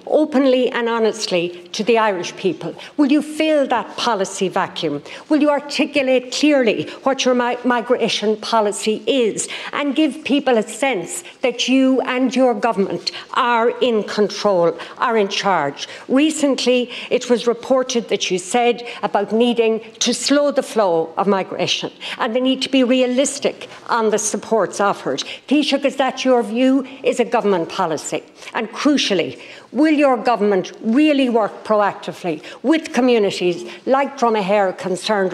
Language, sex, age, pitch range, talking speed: English, female, 60-79, 210-260 Hz, 145 wpm